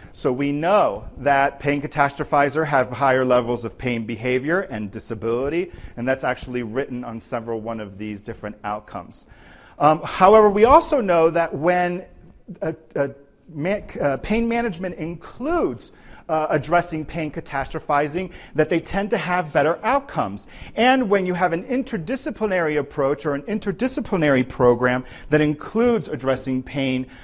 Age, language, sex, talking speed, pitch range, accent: 40-59, English, male, 140 wpm, 130-190 Hz, American